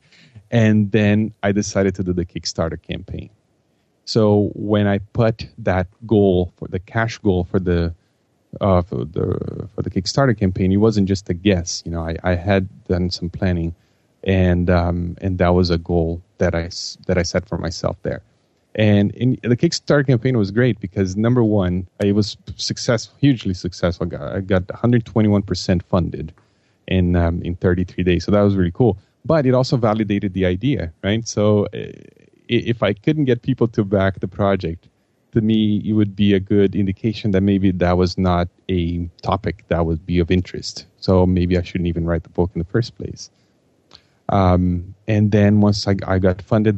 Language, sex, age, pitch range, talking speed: English, male, 30-49, 90-110 Hz, 185 wpm